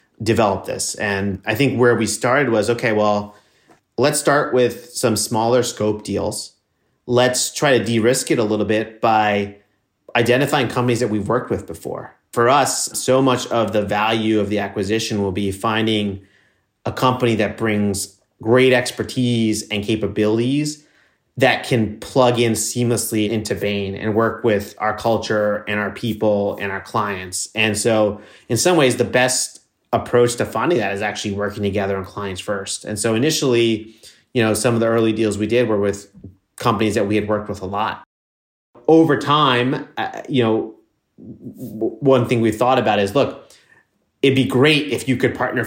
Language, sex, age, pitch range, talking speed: English, male, 30-49, 105-120 Hz, 175 wpm